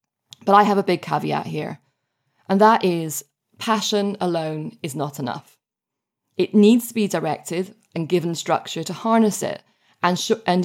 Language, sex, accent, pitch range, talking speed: English, female, British, 165-210 Hz, 160 wpm